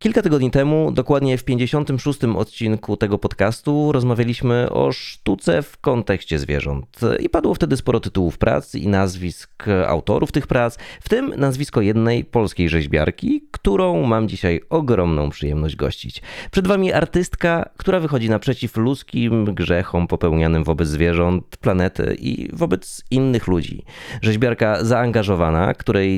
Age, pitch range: 30-49, 90-130 Hz